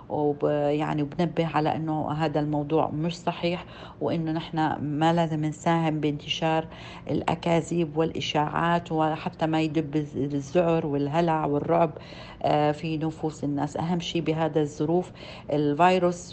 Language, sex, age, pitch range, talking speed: Arabic, female, 50-69, 150-170 Hz, 115 wpm